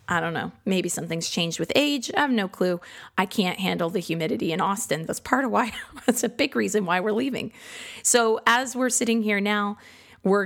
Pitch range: 170-215 Hz